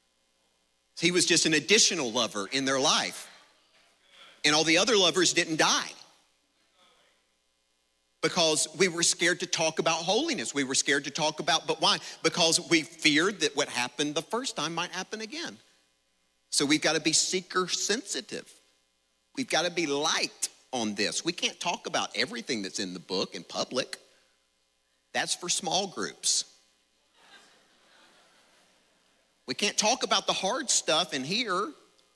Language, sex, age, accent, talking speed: English, male, 40-59, American, 155 wpm